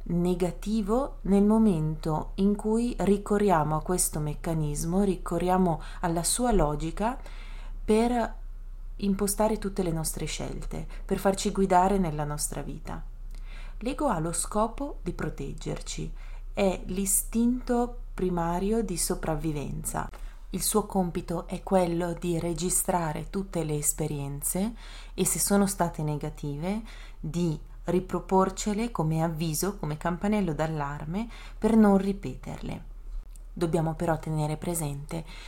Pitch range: 155-195 Hz